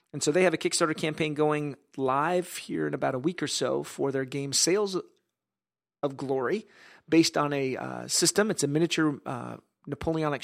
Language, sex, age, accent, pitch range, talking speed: English, male, 40-59, American, 135-160 Hz, 185 wpm